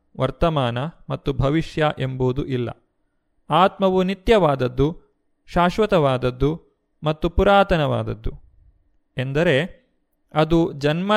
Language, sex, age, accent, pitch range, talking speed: Kannada, male, 30-49, native, 140-175 Hz, 70 wpm